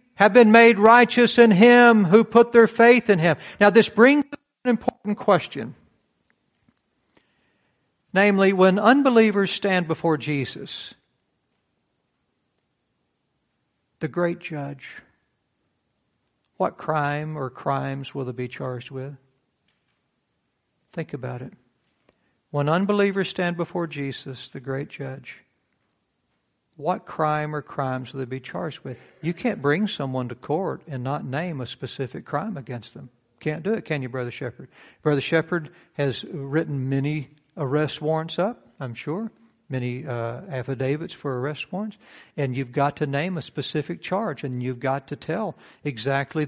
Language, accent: English, American